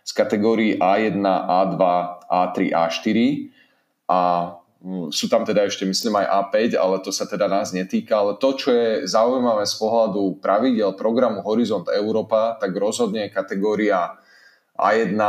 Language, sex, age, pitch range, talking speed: Slovak, male, 30-49, 95-110 Hz, 140 wpm